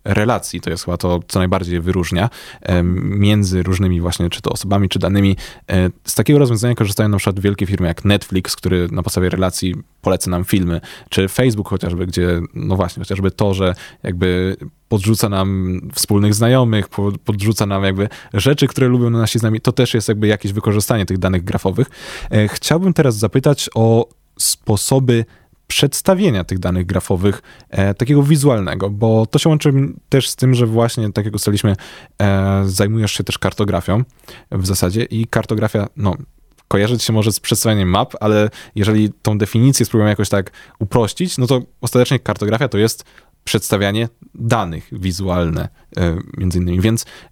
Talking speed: 155 wpm